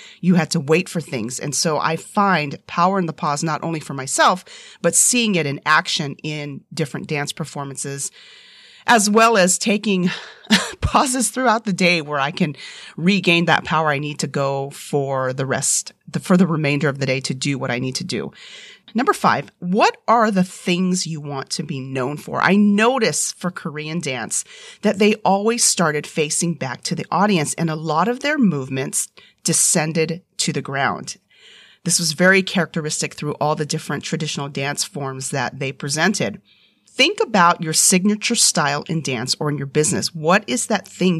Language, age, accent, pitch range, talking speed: English, 40-59, American, 150-200 Hz, 185 wpm